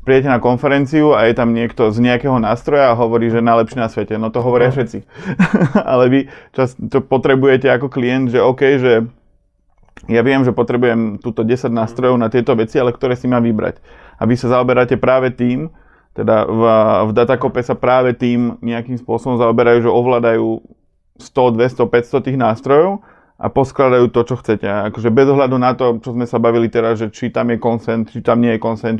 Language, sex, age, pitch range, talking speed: Slovak, male, 30-49, 115-130 Hz, 190 wpm